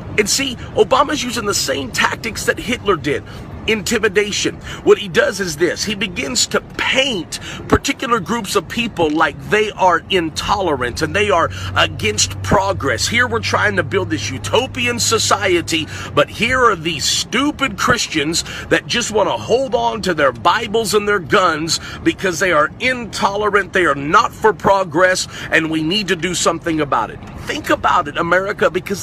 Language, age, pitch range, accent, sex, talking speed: English, 50-69, 170-230 Hz, American, male, 165 wpm